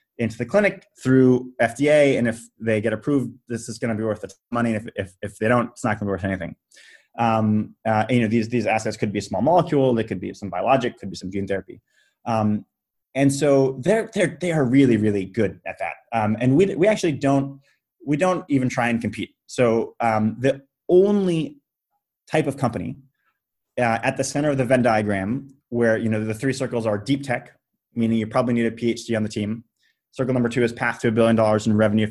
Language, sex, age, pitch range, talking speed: English, male, 30-49, 110-135 Hz, 225 wpm